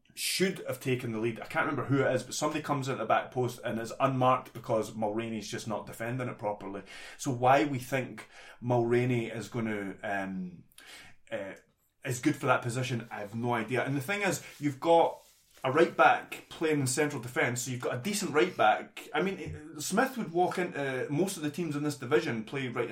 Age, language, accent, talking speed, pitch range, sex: 20-39, English, British, 220 wpm, 125-160 Hz, male